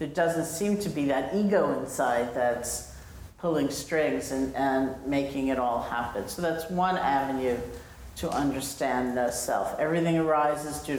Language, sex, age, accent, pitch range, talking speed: English, female, 50-69, American, 130-165 Hz, 155 wpm